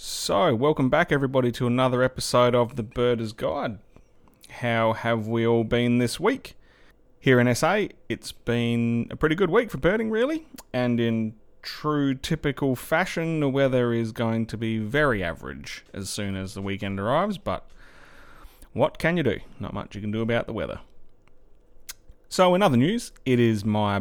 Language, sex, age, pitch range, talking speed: English, male, 30-49, 105-140 Hz, 170 wpm